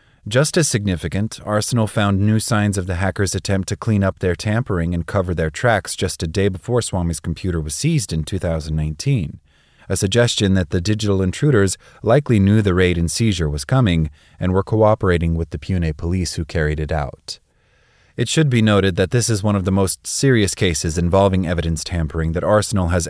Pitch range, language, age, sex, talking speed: 85-110 Hz, English, 30-49, male, 190 wpm